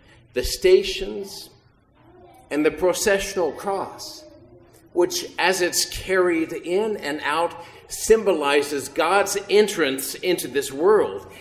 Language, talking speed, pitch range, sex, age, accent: English, 100 wpm, 130-195 Hz, male, 50-69, American